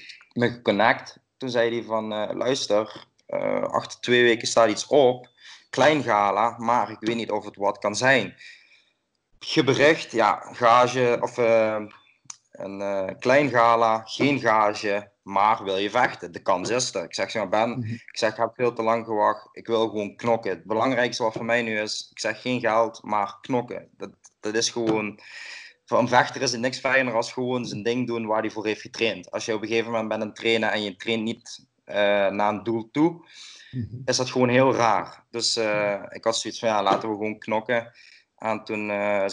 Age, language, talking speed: 20-39, Dutch, 195 wpm